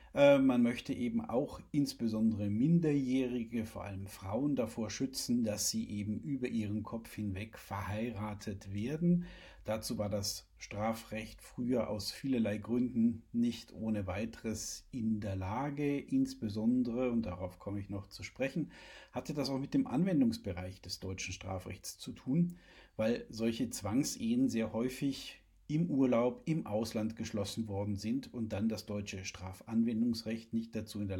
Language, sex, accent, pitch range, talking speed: German, male, German, 105-140 Hz, 140 wpm